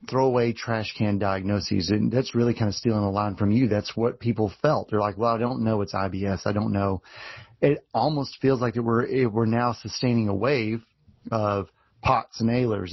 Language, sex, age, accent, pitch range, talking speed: English, male, 30-49, American, 110-130 Hz, 200 wpm